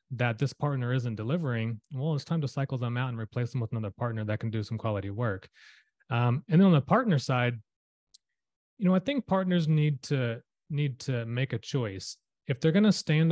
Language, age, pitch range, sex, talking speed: English, 30-49, 115-145 Hz, male, 215 wpm